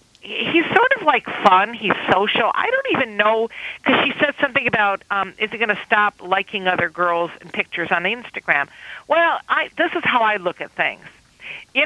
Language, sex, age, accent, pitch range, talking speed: English, female, 50-69, American, 190-250 Hz, 190 wpm